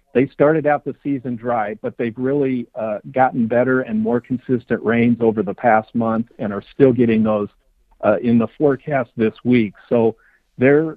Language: English